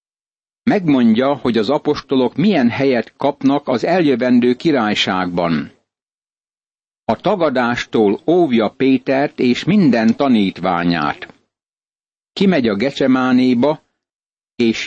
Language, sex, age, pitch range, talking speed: Hungarian, male, 60-79, 120-145 Hz, 85 wpm